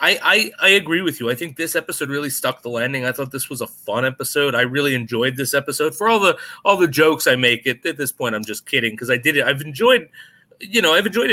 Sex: male